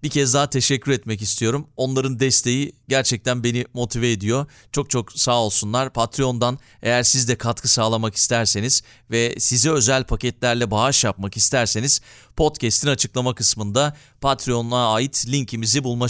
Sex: male